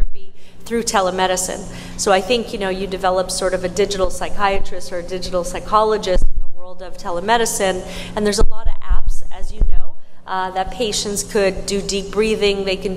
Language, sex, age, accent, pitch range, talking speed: English, female, 30-49, American, 180-200 Hz, 190 wpm